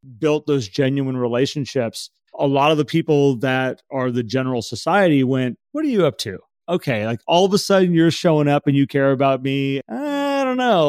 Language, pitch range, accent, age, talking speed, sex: English, 130-155 Hz, American, 30-49, 205 wpm, male